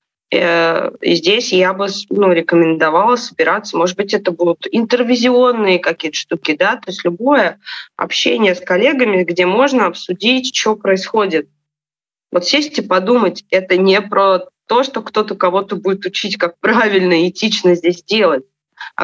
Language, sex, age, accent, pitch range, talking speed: Russian, female, 20-39, native, 175-230 Hz, 145 wpm